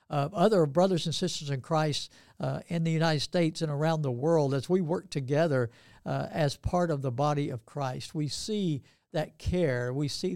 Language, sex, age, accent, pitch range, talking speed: English, male, 60-79, American, 135-165 Hz, 195 wpm